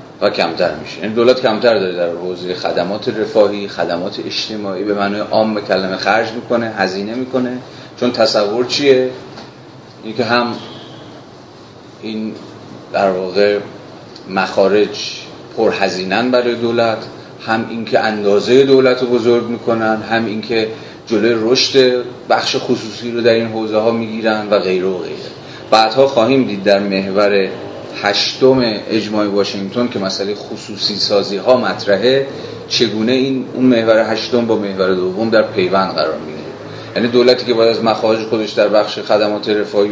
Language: Persian